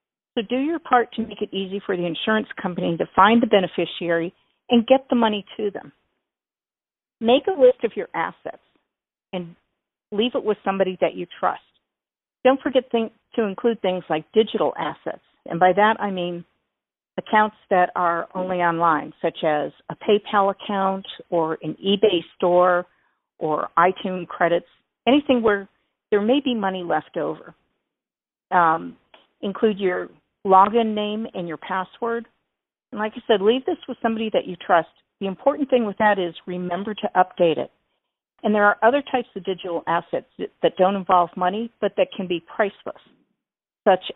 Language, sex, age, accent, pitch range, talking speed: English, female, 50-69, American, 180-225 Hz, 165 wpm